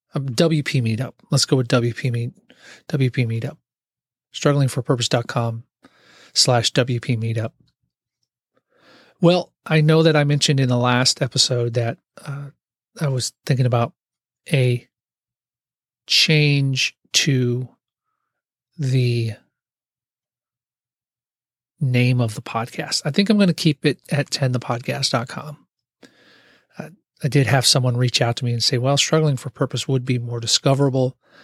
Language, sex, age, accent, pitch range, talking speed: English, male, 40-59, American, 125-150 Hz, 120 wpm